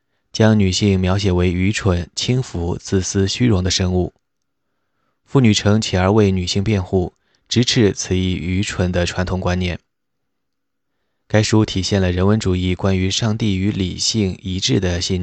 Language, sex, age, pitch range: Chinese, male, 20-39, 90-105 Hz